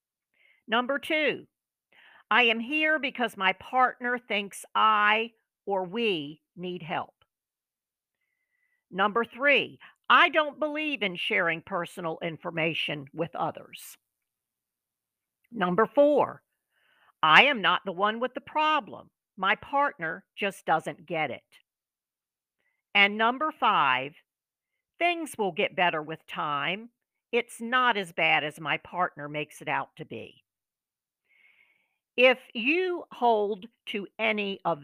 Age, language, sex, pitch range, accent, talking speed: 50-69, English, female, 175-255 Hz, American, 115 wpm